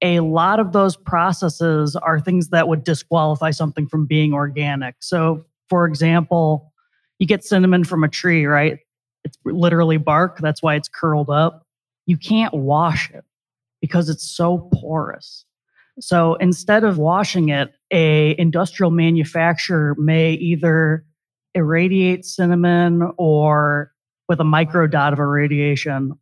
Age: 20-39